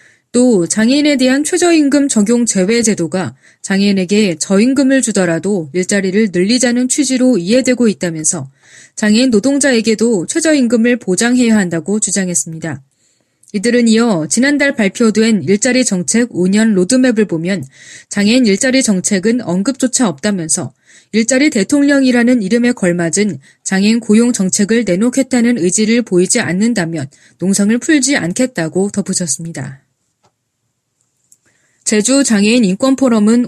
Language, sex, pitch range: Korean, female, 175-245 Hz